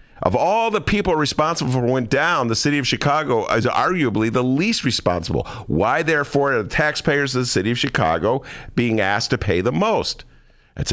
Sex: male